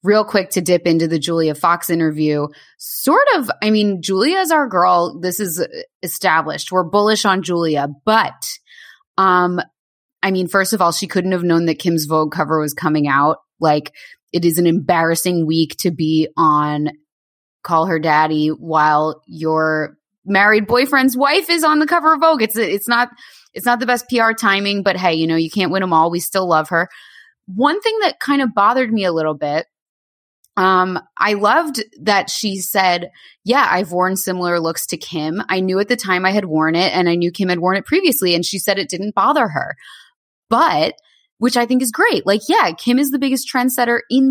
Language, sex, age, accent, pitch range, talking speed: English, female, 20-39, American, 165-220 Hz, 200 wpm